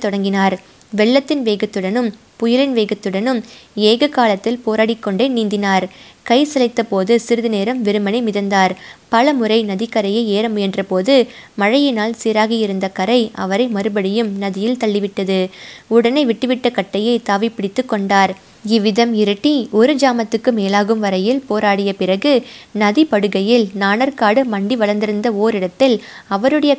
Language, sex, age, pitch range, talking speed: Tamil, female, 20-39, 200-240 Hz, 110 wpm